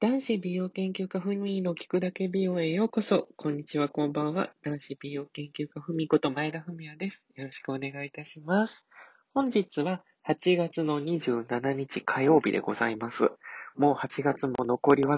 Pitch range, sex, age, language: 115-165 Hz, male, 20-39, Japanese